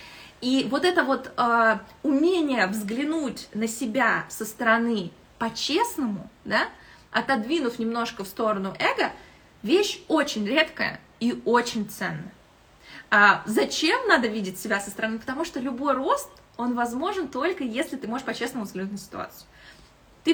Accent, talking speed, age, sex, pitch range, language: native, 135 wpm, 20-39, female, 215-295 Hz, Russian